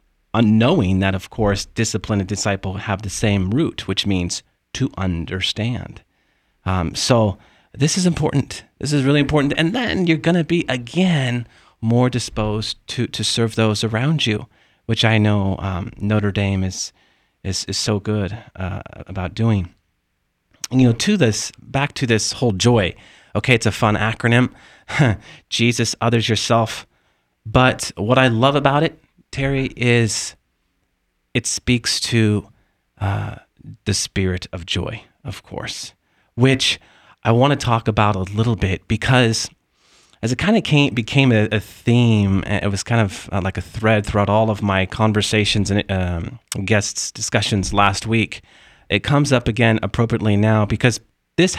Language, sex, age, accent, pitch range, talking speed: English, male, 40-59, American, 100-125 Hz, 155 wpm